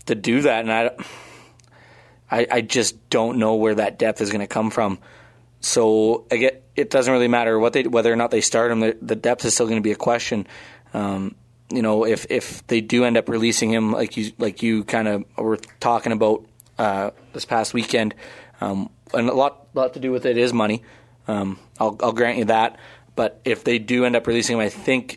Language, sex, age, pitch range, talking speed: English, male, 20-39, 110-120 Hz, 225 wpm